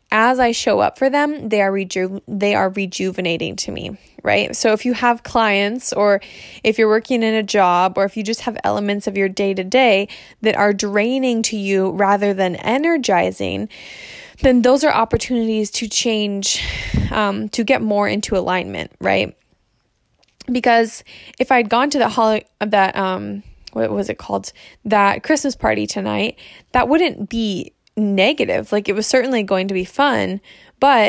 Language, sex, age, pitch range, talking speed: English, female, 20-39, 195-240 Hz, 175 wpm